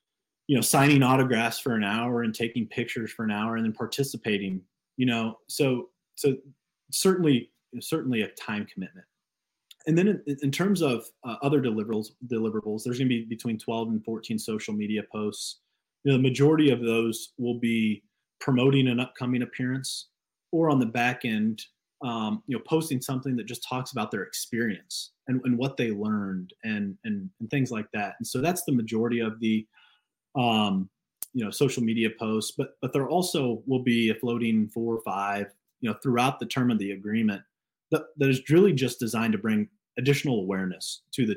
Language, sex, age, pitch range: English, male, 30-49, 110-140 Hz